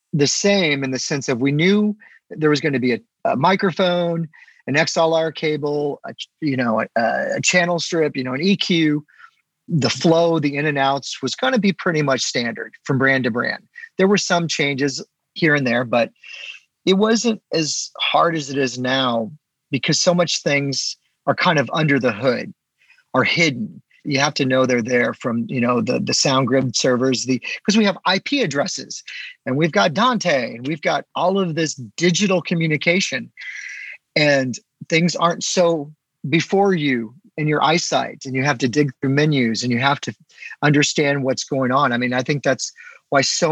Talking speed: 190 wpm